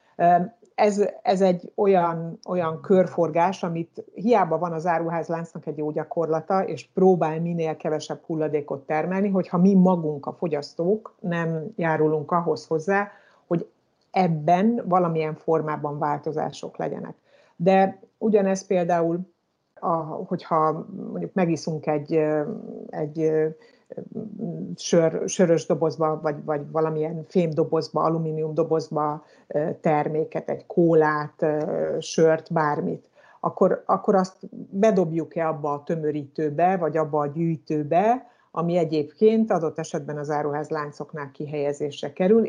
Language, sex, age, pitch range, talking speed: Hungarian, female, 60-79, 155-190 Hz, 110 wpm